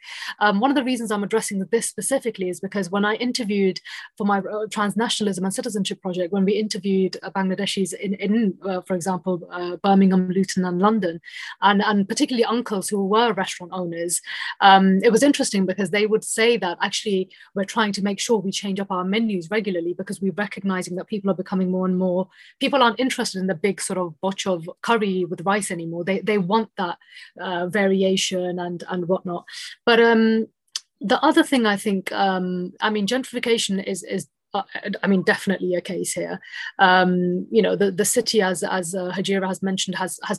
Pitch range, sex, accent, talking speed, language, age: 185-215 Hz, female, British, 200 wpm, English, 20-39